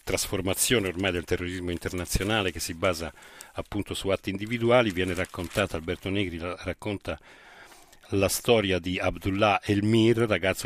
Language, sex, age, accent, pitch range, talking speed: Italian, male, 40-59, native, 90-110 Hz, 130 wpm